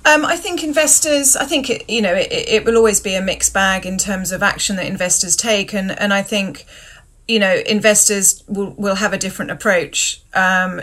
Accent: British